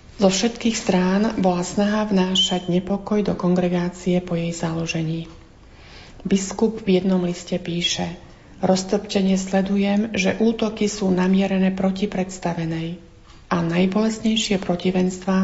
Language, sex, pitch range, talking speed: Slovak, female, 175-200 Hz, 110 wpm